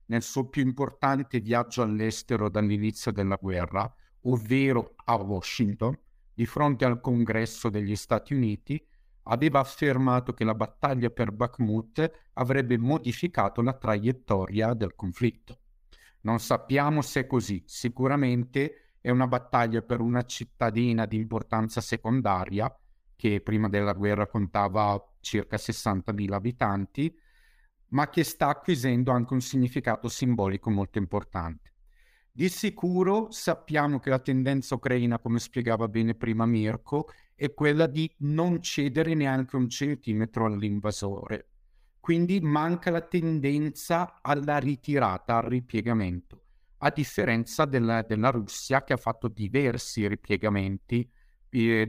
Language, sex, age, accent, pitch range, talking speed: Italian, male, 50-69, native, 110-140 Hz, 120 wpm